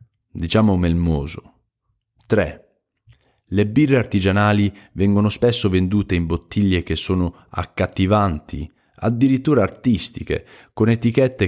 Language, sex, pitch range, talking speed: Italian, male, 85-110 Hz, 95 wpm